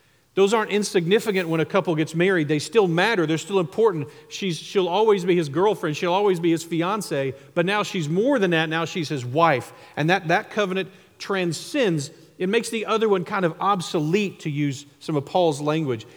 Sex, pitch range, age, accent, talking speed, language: male, 140-175 Hz, 40-59, American, 195 wpm, English